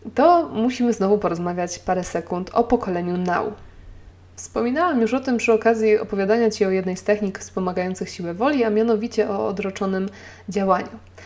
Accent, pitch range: native, 185-220 Hz